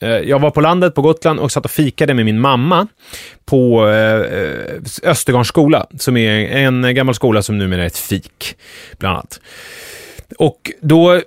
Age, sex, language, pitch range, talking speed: 30-49, male, English, 110-155 Hz, 155 wpm